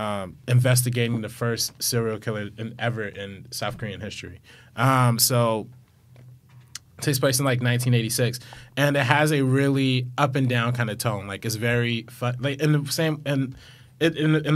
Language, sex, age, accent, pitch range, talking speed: English, male, 20-39, American, 110-125 Hz, 180 wpm